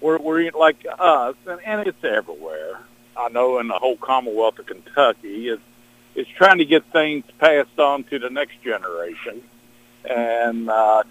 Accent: American